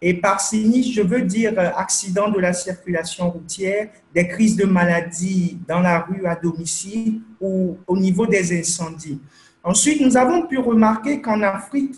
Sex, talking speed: male, 160 wpm